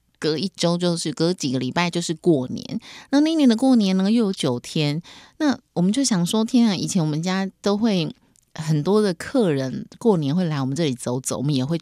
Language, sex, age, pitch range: Chinese, female, 30-49, 150-205 Hz